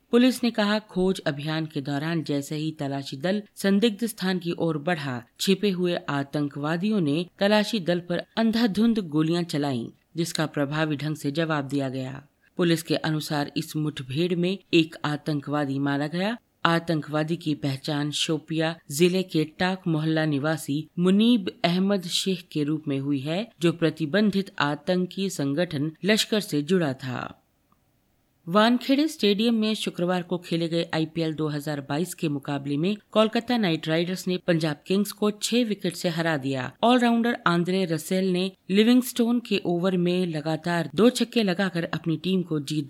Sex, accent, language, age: female, native, Hindi, 50-69